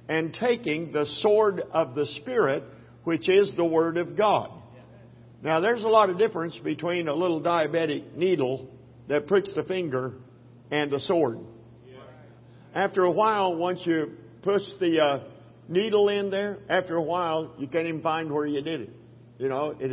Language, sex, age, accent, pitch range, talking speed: English, male, 50-69, American, 135-185 Hz, 170 wpm